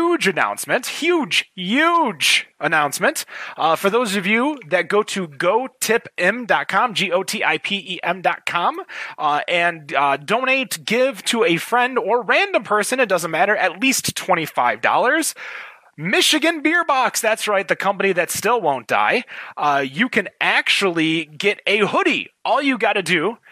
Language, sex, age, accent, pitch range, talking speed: English, male, 30-49, American, 180-255 Hz, 140 wpm